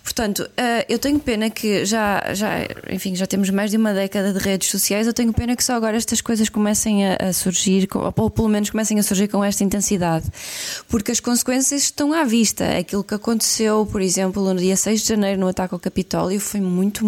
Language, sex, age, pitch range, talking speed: Portuguese, female, 20-39, 190-225 Hz, 205 wpm